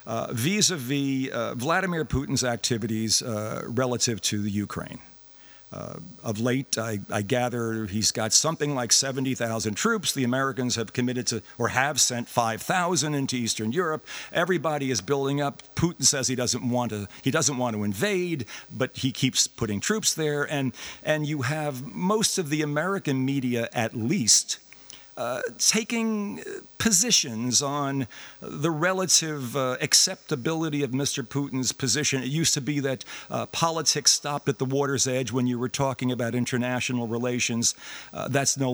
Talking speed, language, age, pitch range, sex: 155 wpm, English, 50-69, 120-155 Hz, male